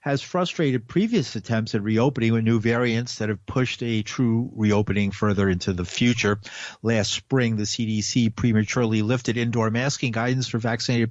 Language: English